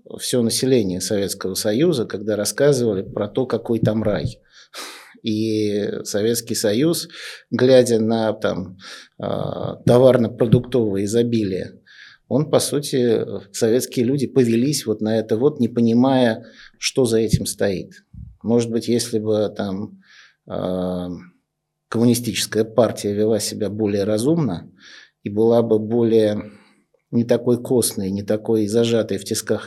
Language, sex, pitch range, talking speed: Russian, male, 105-120 Hz, 115 wpm